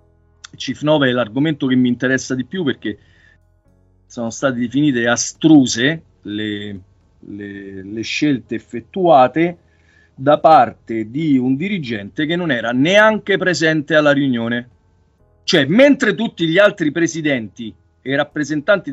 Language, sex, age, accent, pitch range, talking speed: Italian, male, 40-59, native, 115-180 Hz, 120 wpm